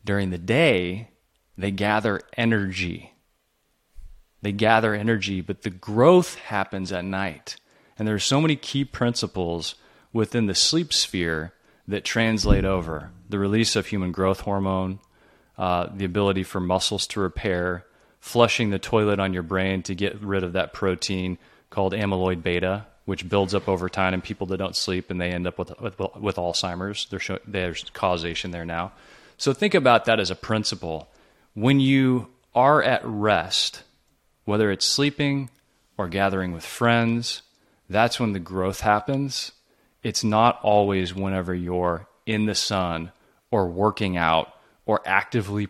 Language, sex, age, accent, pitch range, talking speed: English, male, 30-49, American, 90-110 Hz, 150 wpm